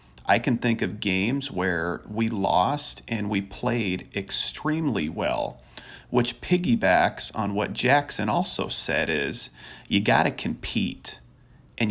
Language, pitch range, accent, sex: English, 95-120 Hz, American, male